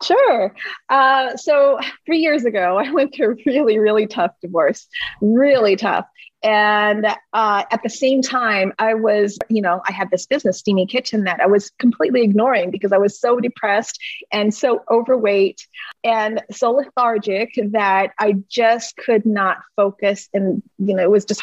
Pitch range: 190-230 Hz